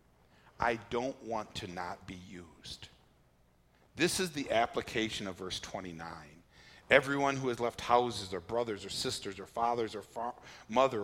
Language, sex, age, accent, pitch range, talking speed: English, male, 50-69, American, 90-130 Hz, 145 wpm